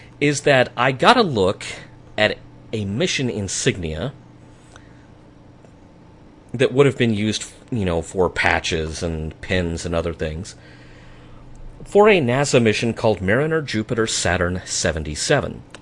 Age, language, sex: 40-59, English, male